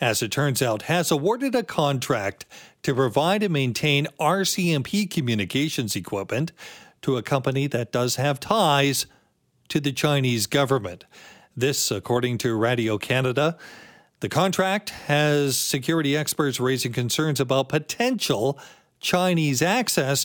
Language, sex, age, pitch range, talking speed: English, male, 40-59, 125-160 Hz, 125 wpm